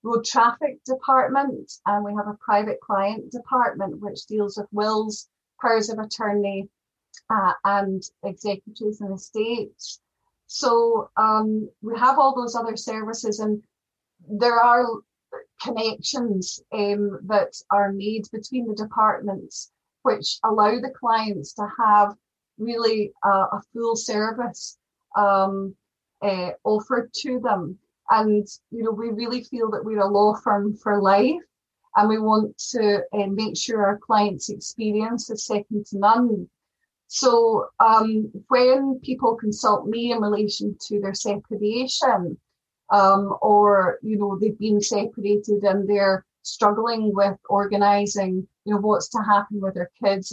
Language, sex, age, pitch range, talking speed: English, female, 30-49, 200-230 Hz, 135 wpm